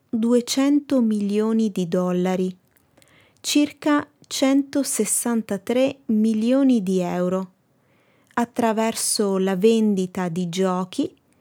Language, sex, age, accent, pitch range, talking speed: Italian, female, 30-49, native, 185-255 Hz, 75 wpm